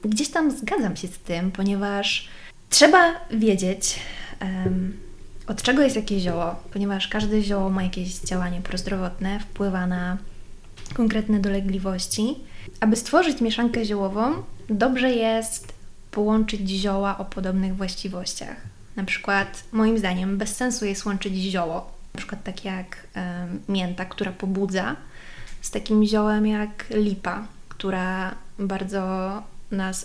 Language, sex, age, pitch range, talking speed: Polish, female, 20-39, 185-225 Hz, 125 wpm